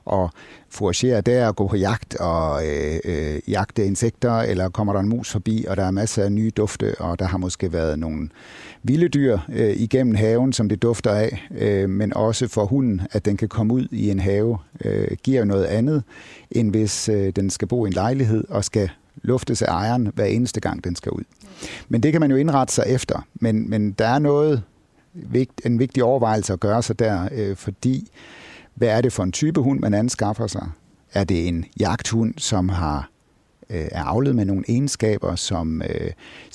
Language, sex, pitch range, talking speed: Danish, male, 95-120 Hz, 200 wpm